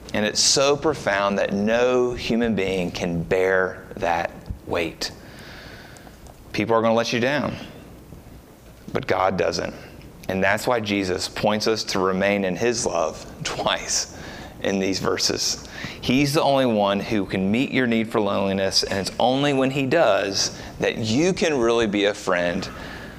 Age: 30-49